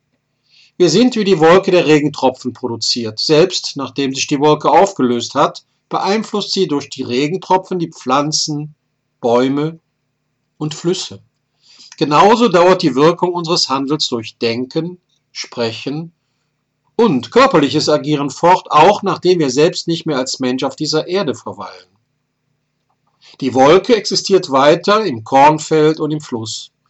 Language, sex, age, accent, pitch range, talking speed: German, male, 50-69, German, 130-165 Hz, 130 wpm